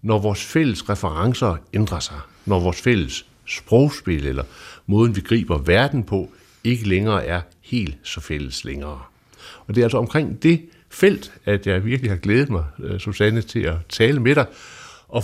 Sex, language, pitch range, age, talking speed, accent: male, Danish, 95-125 Hz, 60-79, 170 wpm, native